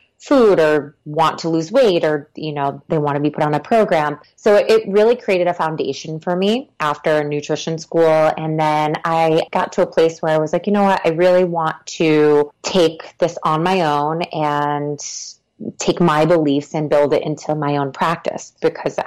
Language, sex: English, female